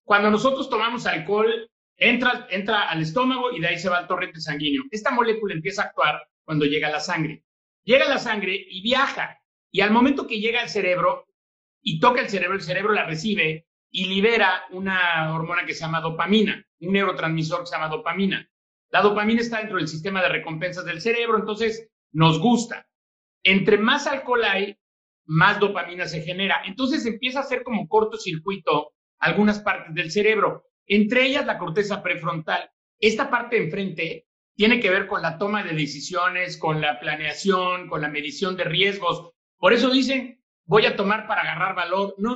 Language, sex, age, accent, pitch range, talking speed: Spanish, male, 40-59, Mexican, 175-225 Hz, 180 wpm